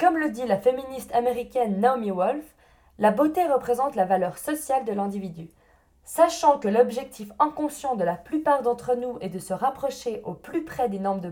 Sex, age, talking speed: female, 20-39, 185 wpm